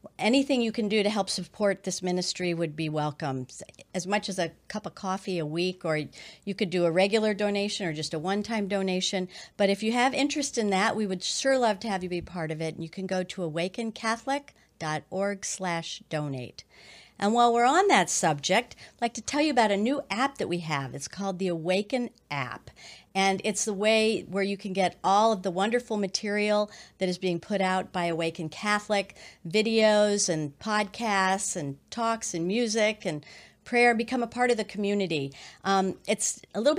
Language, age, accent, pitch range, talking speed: English, 50-69, American, 175-220 Hz, 200 wpm